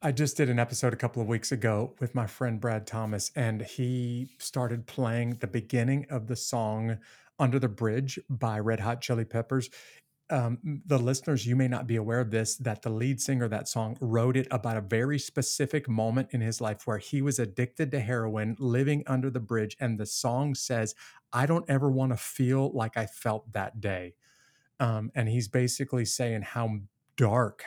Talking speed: 195 wpm